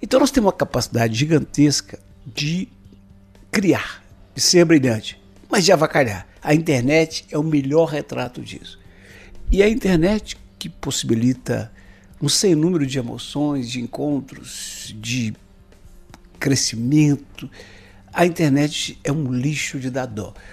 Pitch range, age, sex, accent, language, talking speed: 115-155 Hz, 60-79, male, Brazilian, Portuguese, 125 wpm